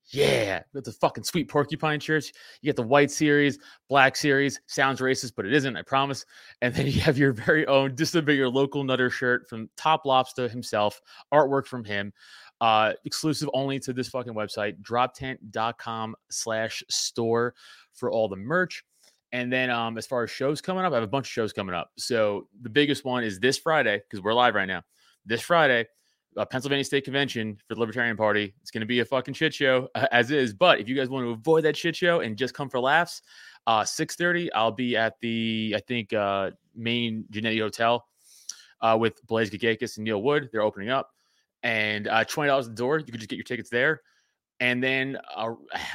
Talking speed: 205 wpm